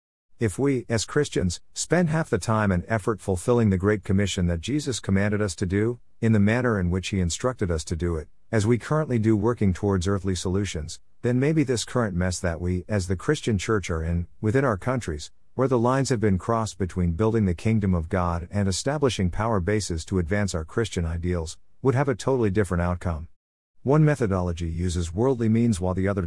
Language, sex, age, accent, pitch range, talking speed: English, male, 50-69, American, 90-115 Hz, 205 wpm